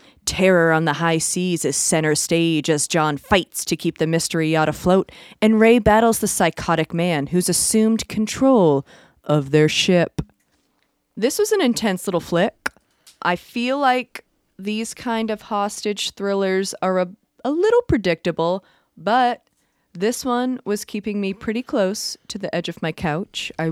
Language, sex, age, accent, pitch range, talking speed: English, female, 30-49, American, 165-225 Hz, 160 wpm